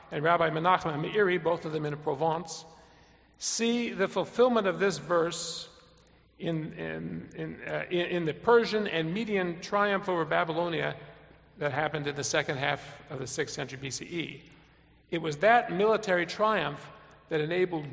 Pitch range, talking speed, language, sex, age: 140-200 Hz, 160 wpm, English, male, 50-69